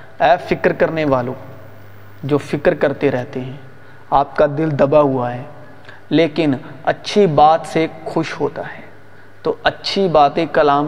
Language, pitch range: Urdu, 135-180 Hz